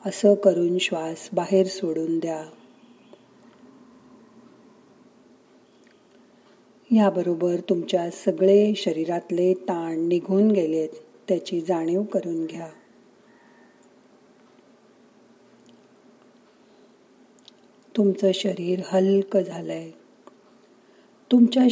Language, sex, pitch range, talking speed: Marathi, female, 175-215 Hz, 50 wpm